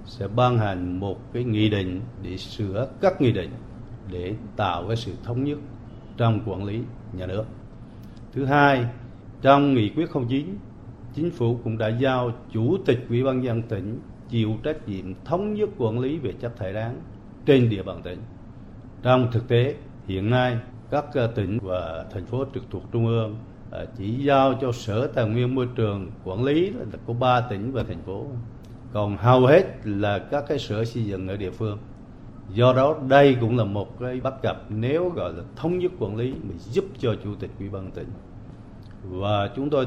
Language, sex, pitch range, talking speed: Vietnamese, male, 105-125 Hz, 190 wpm